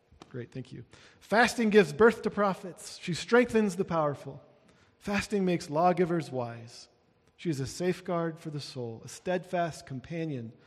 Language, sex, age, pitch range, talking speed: English, male, 40-59, 135-175 Hz, 145 wpm